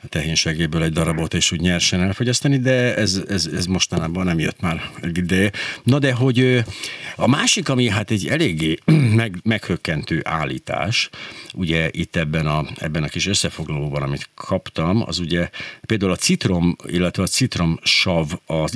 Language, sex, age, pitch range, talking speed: Hungarian, male, 50-69, 85-120 Hz, 145 wpm